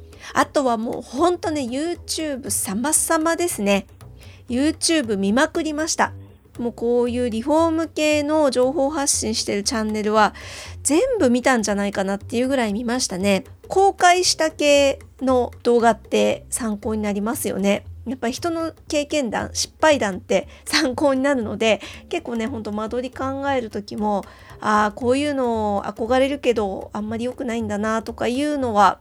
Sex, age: female, 40-59